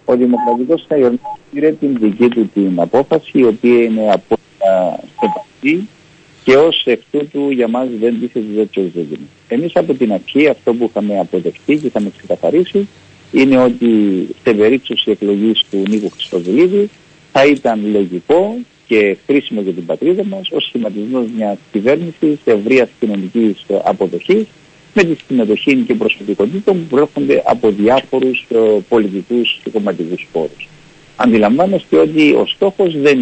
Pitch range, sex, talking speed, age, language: 105-155 Hz, male, 145 wpm, 50-69, Greek